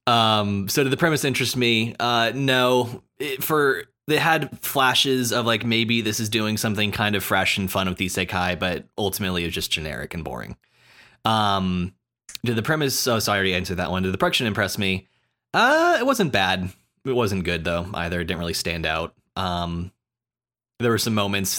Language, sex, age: English, male, 30-49